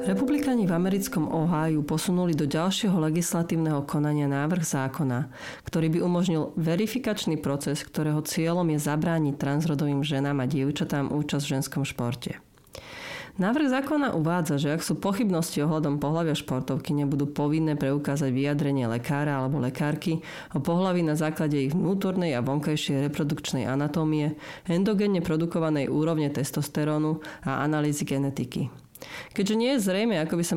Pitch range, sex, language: 140-170 Hz, female, Slovak